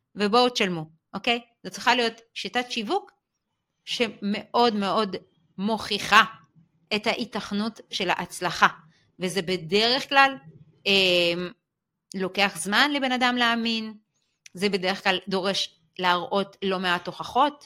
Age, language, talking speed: 30-49, Hebrew, 110 wpm